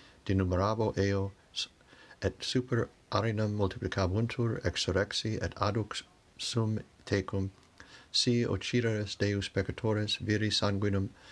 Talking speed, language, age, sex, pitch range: 90 wpm, English, 60-79, male, 95-115 Hz